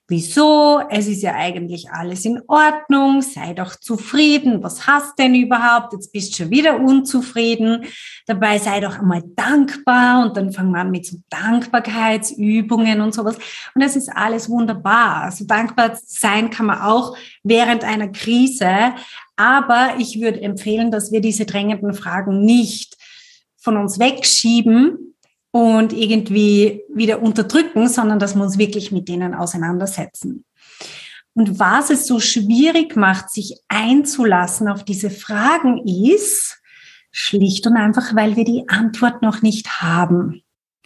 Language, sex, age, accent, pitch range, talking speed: German, female, 30-49, German, 200-250 Hz, 145 wpm